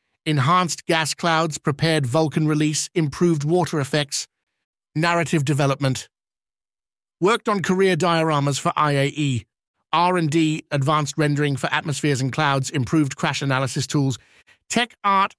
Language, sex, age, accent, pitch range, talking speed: English, male, 50-69, British, 140-170 Hz, 115 wpm